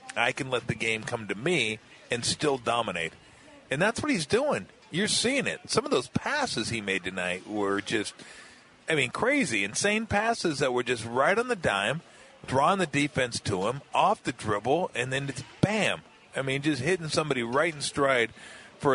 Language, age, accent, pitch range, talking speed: English, 40-59, American, 120-150 Hz, 195 wpm